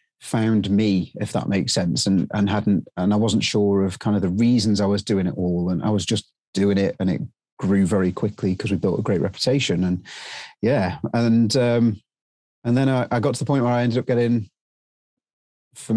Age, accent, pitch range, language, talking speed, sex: 30-49, British, 100-120 Hz, English, 220 wpm, male